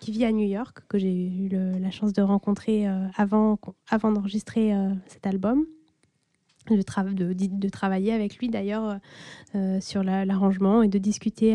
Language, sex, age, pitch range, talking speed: French, female, 20-39, 200-230 Hz, 145 wpm